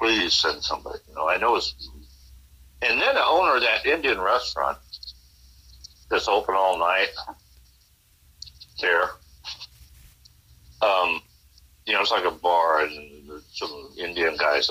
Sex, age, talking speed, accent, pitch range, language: male, 60-79, 130 wpm, American, 70-105 Hz, English